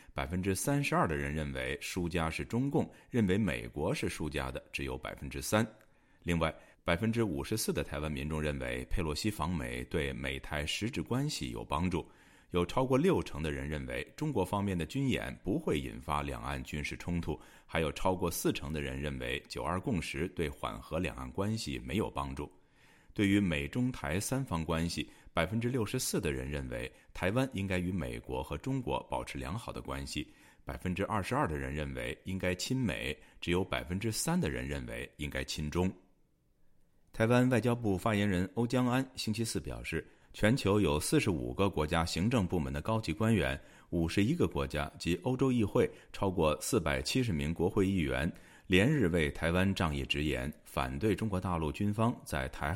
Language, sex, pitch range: Chinese, male, 75-105 Hz